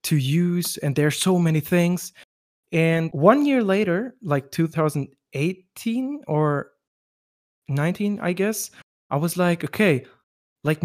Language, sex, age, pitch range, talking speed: English, male, 20-39, 135-165 Hz, 125 wpm